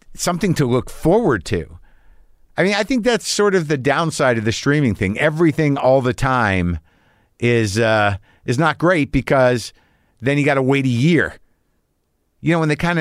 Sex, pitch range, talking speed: male, 95-140 Hz, 185 wpm